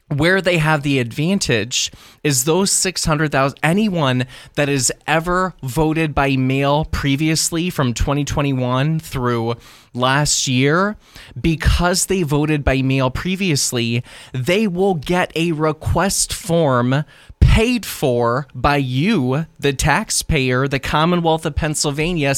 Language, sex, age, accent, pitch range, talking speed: English, male, 20-39, American, 130-160 Hz, 115 wpm